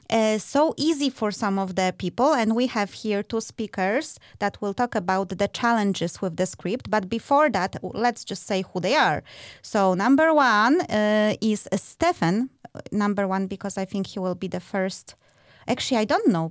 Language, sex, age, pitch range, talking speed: English, female, 20-39, 190-250 Hz, 190 wpm